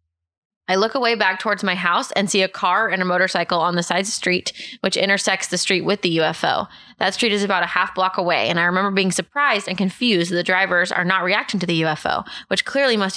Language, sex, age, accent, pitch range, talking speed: English, female, 20-39, American, 175-200 Hz, 245 wpm